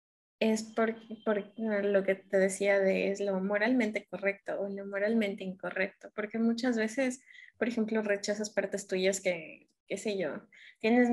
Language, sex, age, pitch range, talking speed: Spanish, female, 20-39, 190-220 Hz, 160 wpm